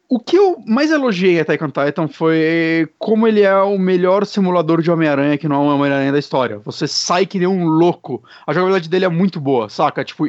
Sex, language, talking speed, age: male, Portuguese, 215 wpm, 30-49